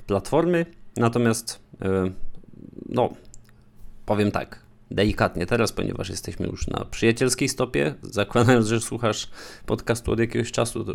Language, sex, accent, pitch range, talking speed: Polish, male, native, 100-125 Hz, 115 wpm